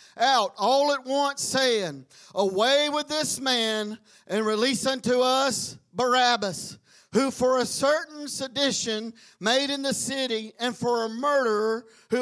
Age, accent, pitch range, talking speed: 40-59, American, 215-275 Hz, 135 wpm